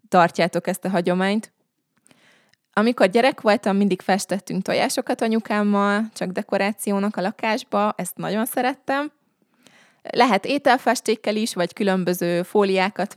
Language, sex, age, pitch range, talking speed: Hungarian, female, 20-39, 180-220 Hz, 110 wpm